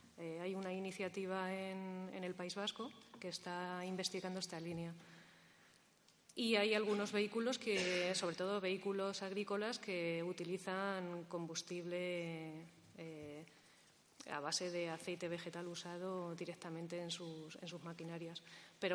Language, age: Spanish, 30-49